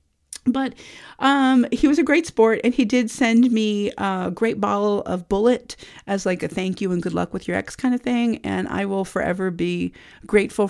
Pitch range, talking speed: 195-240 Hz, 205 wpm